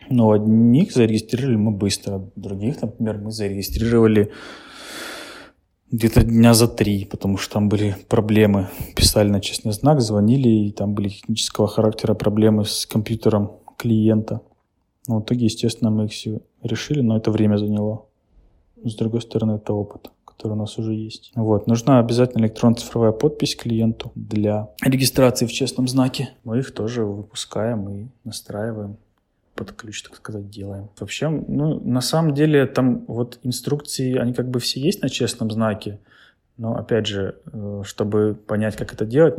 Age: 20-39